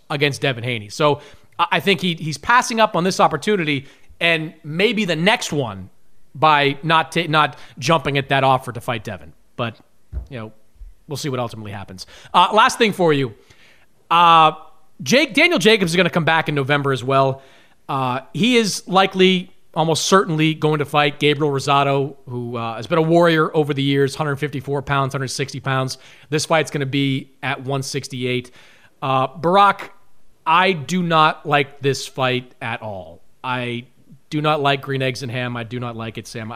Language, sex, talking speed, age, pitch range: English, male, 180 wpm, 30-49, 135-170 Hz